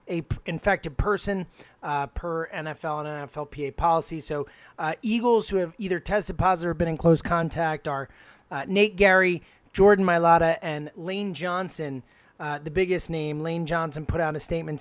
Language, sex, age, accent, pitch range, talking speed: English, male, 30-49, American, 150-185 Hz, 165 wpm